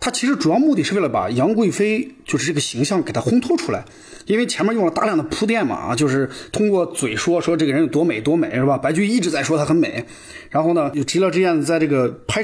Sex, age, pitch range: male, 30-49, 135-215 Hz